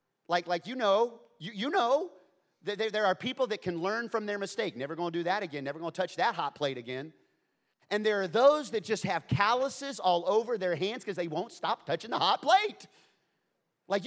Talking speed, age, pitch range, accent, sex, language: 220 wpm, 30-49, 160-230 Hz, American, male, English